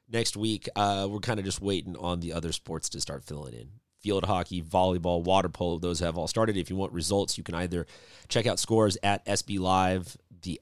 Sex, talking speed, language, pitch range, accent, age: male, 220 wpm, English, 90-110 Hz, American, 30-49